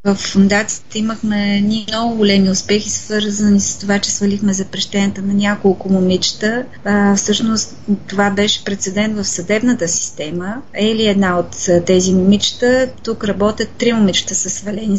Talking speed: 135 wpm